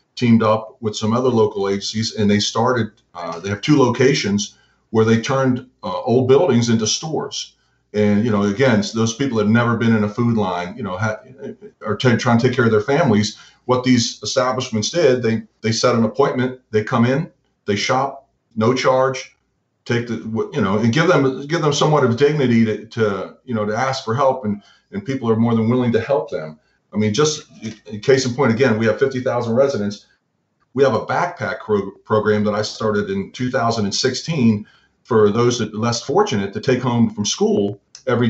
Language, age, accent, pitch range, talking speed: English, 40-59, American, 105-130 Hz, 205 wpm